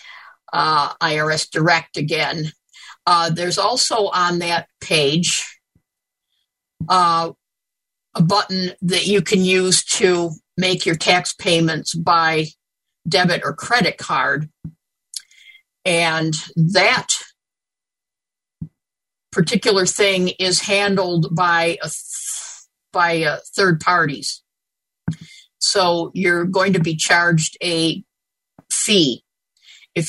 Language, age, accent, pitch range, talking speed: English, 50-69, American, 160-185 Hz, 90 wpm